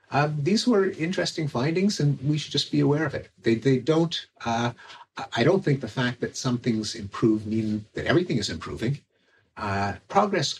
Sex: male